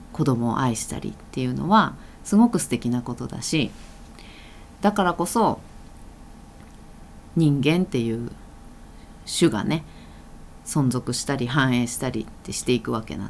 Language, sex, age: Japanese, female, 40-59